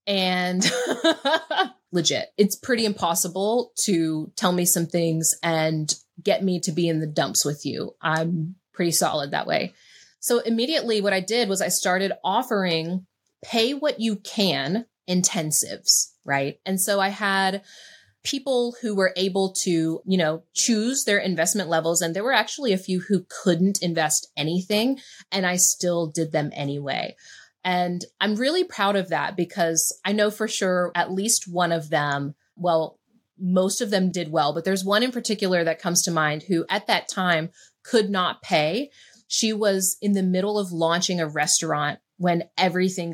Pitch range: 165-205 Hz